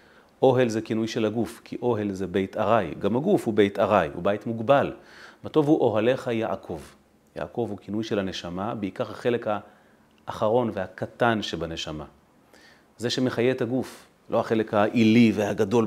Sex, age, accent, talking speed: male, 30-49, native, 155 wpm